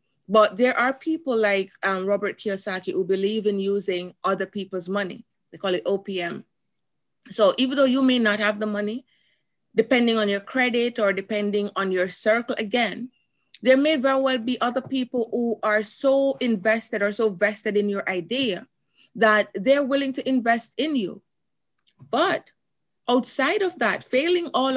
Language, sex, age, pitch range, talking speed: English, female, 30-49, 190-235 Hz, 165 wpm